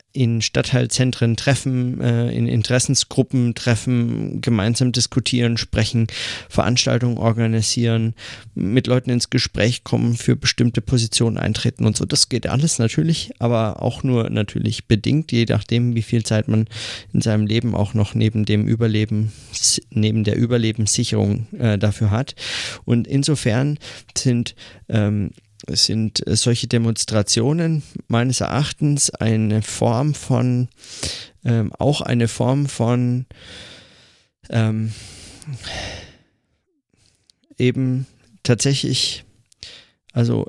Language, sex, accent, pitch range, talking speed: German, male, German, 110-130 Hz, 105 wpm